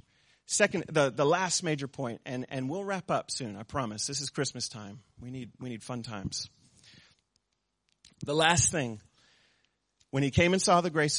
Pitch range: 120-160 Hz